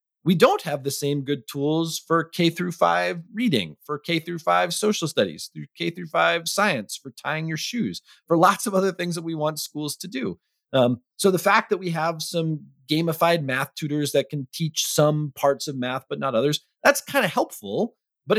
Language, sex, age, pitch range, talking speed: English, male, 30-49, 130-170 Hz, 205 wpm